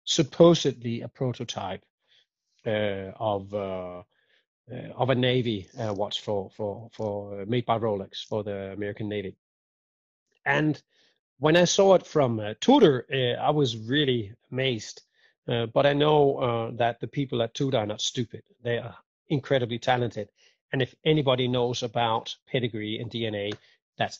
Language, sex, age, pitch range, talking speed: English, male, 30-49, 110-140 Hz, 155 wpm